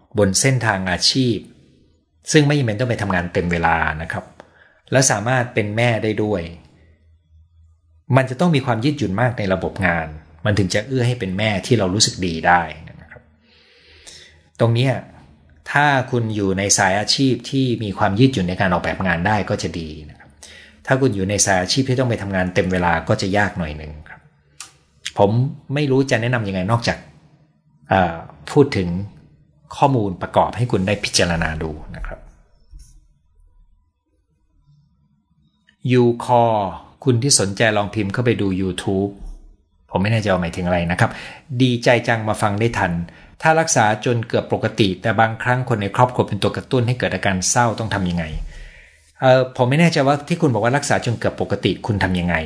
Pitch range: 85-125 Hz